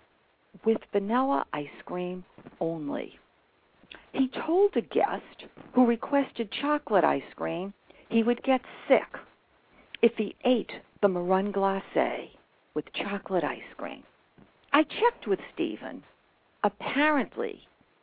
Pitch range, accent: 180-250 Hz, American